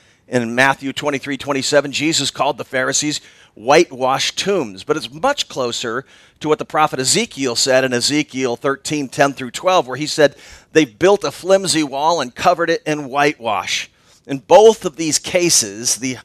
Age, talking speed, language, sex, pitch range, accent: 40-59, 165 wpm, English, male, 130-160 Hz, American